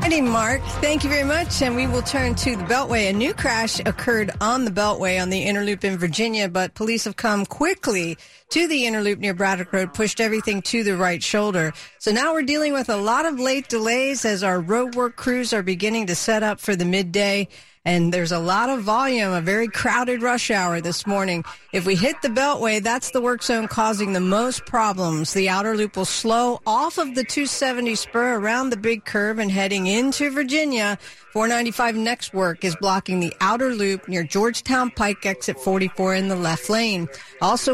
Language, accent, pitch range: English, American, 195-245 Hz